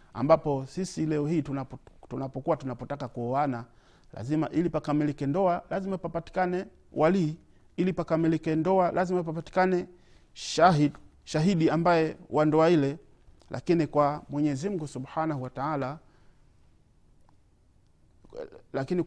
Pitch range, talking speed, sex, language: 125-160 Hz, 100 wpm, male, Swahili